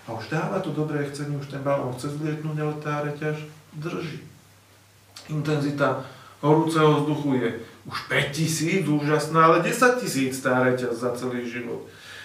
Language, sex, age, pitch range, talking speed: Slovak, male, 40-59, 125-160 Hz, 135 wpm